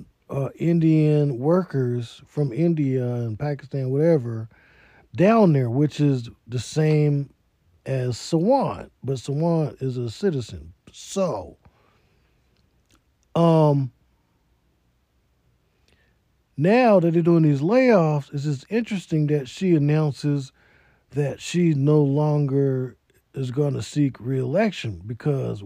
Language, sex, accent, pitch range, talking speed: English, male, American, 130-165 Hz, 105 wpm